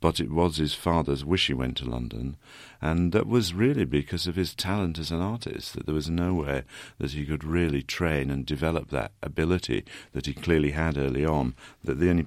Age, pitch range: 50-69, 75-95 Hz